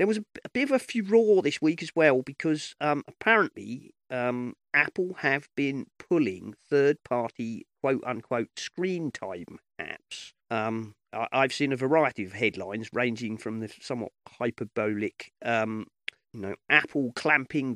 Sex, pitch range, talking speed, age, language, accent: male, 110-145 Hz, 150 wpm, 40-59, English, British